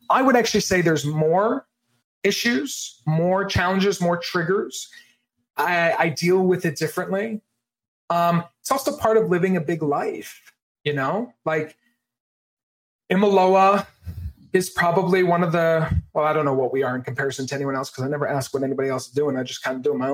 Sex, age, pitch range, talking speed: male, 30-49, 140-200 Hz, 185 wpm